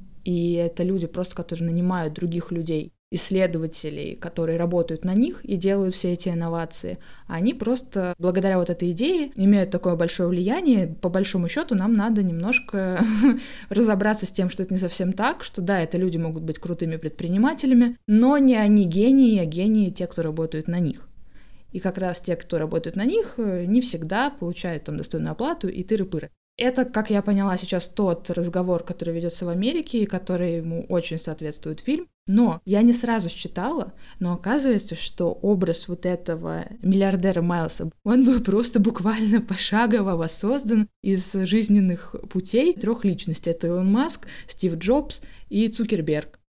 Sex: female